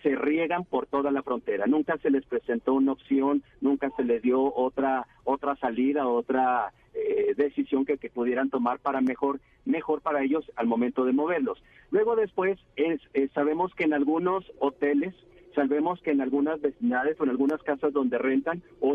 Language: Spanish